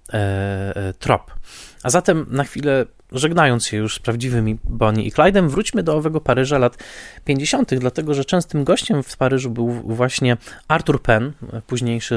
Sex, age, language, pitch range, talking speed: male, 20-39, Polish, 105-130 Hz, 150 wpm